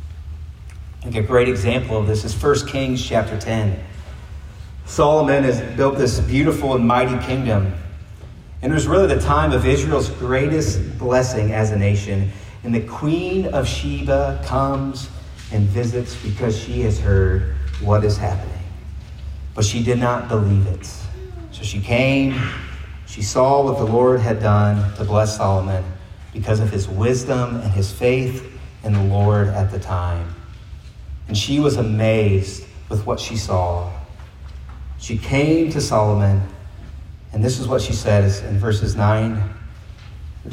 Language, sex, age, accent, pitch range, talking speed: English, male, 30-49, American, 95-125 Hz, 150 wpm